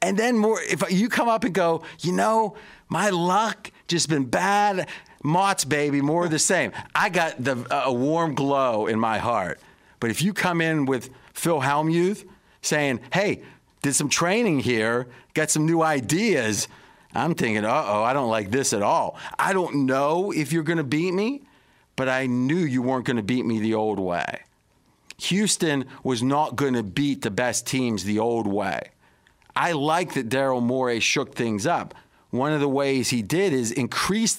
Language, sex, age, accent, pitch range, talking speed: English, male, 40-59, American, 125-170 Hz, 185 wpm